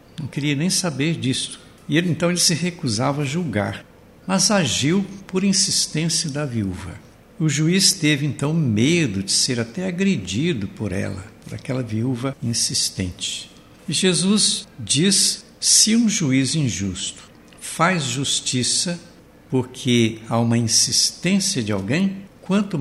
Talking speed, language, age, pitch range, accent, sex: 130 wpm, Portuguese, 70-89, 115-165 Hz, Brazilian, male